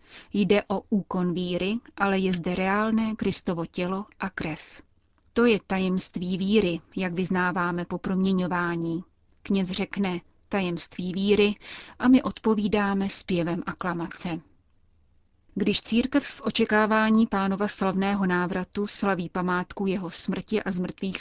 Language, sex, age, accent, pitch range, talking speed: Czech, female, 30-49, native, 180-205 Hz, 120 wpm